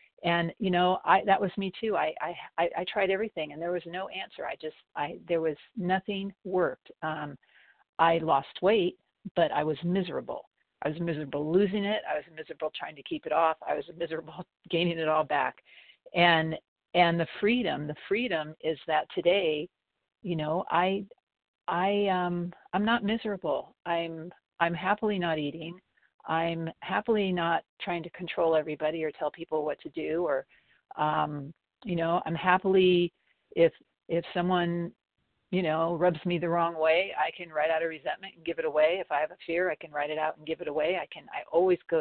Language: English